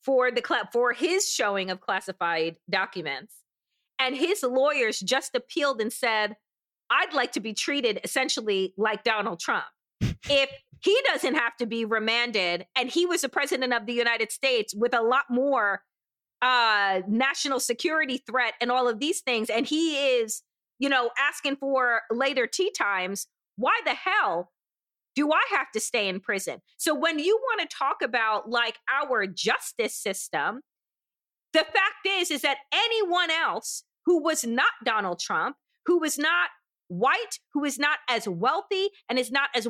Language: English